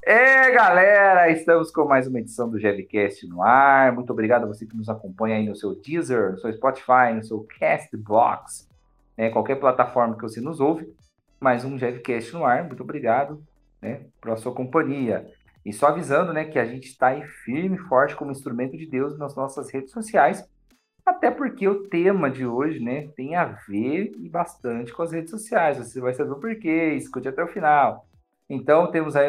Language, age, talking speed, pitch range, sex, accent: Portuguese, 40-59, 195 wpm, 120-155 Hz, male, Brazilian